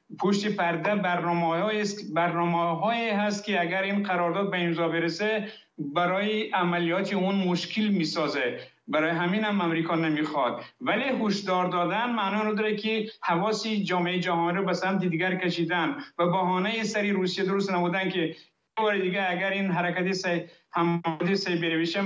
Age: 60-79